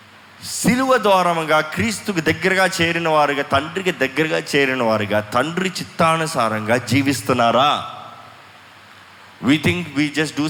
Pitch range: 115-155 Hz